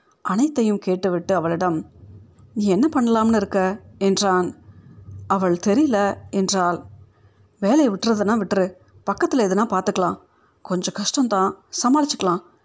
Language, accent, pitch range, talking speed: Tamil, native, 185-255 Hz, 95 wpm